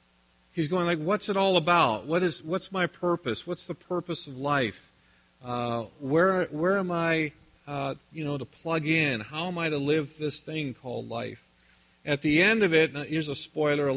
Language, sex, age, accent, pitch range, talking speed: English, male, 40-59, American, 125-170 Hz, 200 wpm